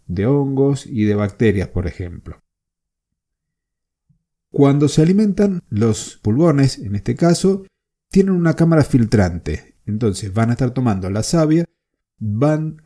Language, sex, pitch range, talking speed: Spanish, male, 105-140 Hz, 125 wpm